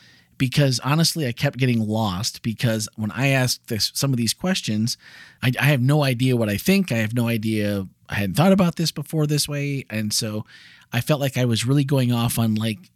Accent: American